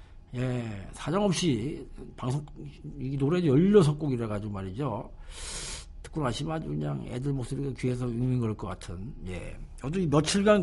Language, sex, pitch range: Korean, male, 100-160 Hz